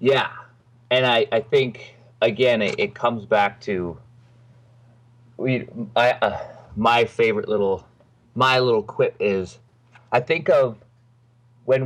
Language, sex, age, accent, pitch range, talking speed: English, male, 30-49, American, 110-125 Hz, 125 wpm